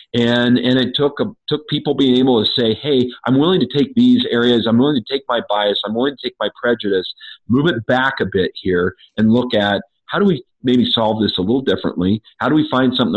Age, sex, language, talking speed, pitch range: 40-59, male, English, 240 wpm, 100-125 Hz